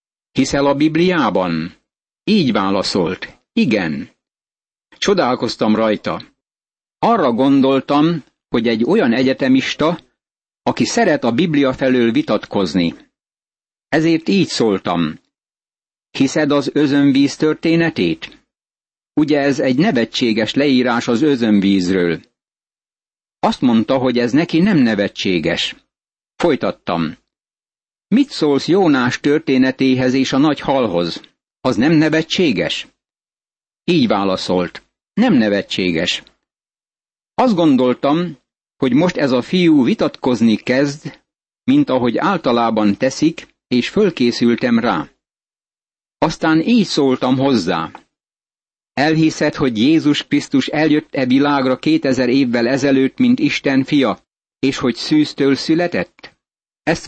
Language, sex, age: Hungarian, male, 60-79